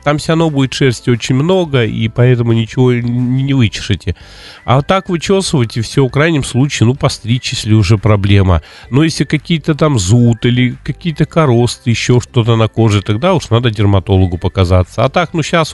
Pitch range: 105-135 Hz